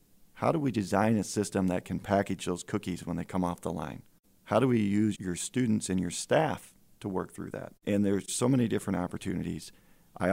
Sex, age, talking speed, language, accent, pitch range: male, 40-59, 215 wpm, English, American, 95-105 Hz